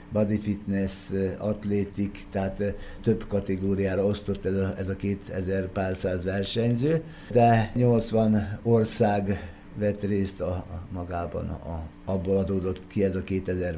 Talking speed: 115 wpm